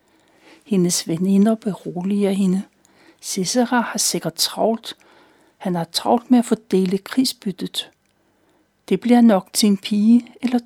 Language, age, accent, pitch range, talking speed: Danish, 60-79, native, 190-230 Hz, 125 wpm